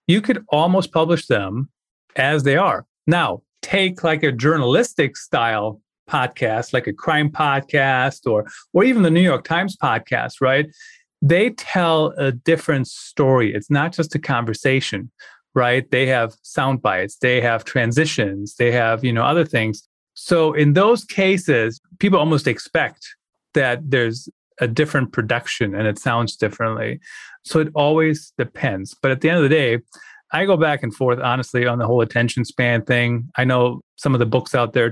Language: English